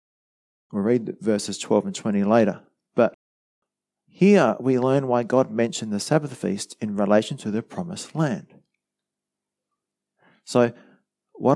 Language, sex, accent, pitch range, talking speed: English, male, Australian, 100-145 Hz, 130 wpm